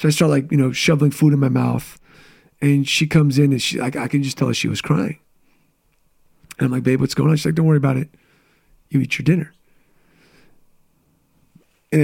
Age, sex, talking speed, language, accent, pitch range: 30-49, male, 220 wpm, English, American, 140-175 Hz